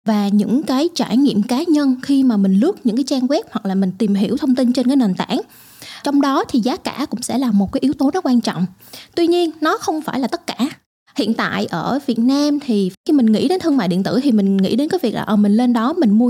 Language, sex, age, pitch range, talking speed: Vietnamese, female, 20-39, 215-280 Hz, 275 wpm